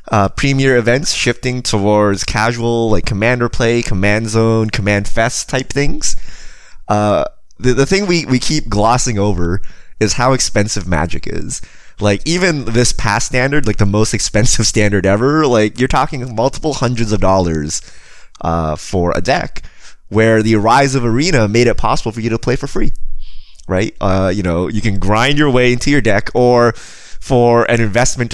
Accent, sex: American, male